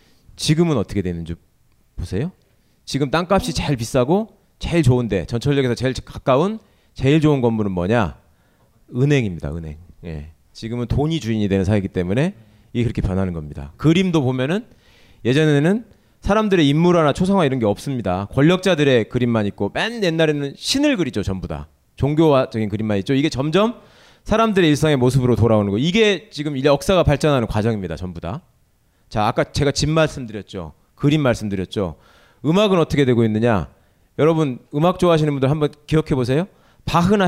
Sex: male